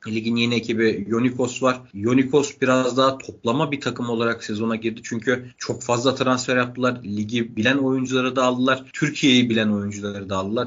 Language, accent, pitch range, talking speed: Turkish, native, 110-130 Hz, 165 wpm